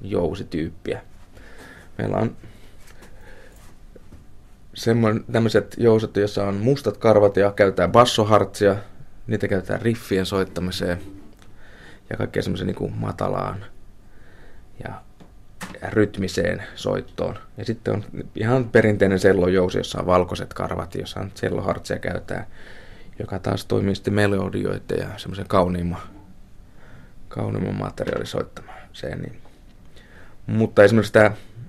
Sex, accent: male, native